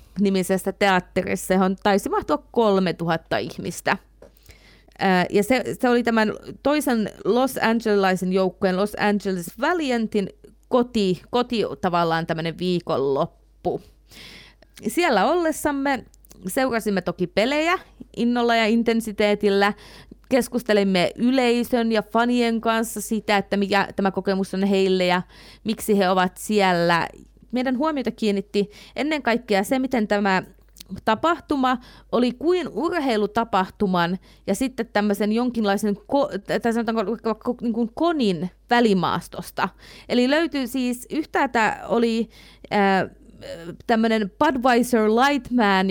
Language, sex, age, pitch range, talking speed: Finnish, female, 30-49, 195-245 Hz, 105 wpm